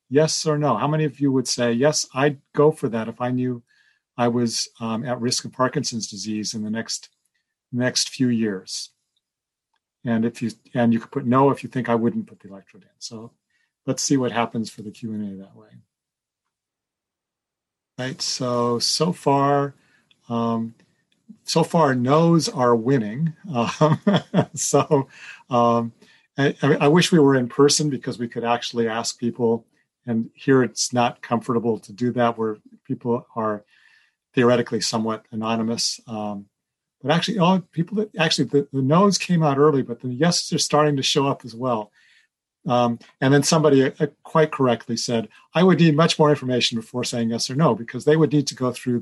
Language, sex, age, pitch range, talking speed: English, male, 40-59, 115-150 Hz, 180 wpm